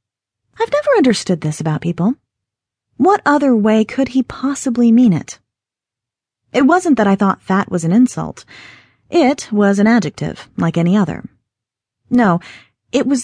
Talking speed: 150 wpm